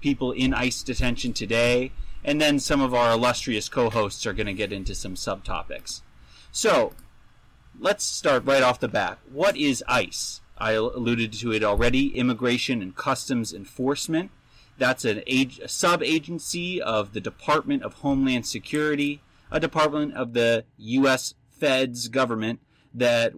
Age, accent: 30-49, American